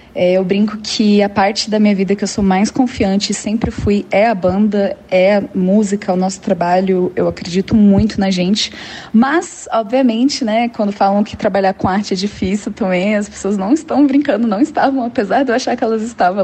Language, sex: English, female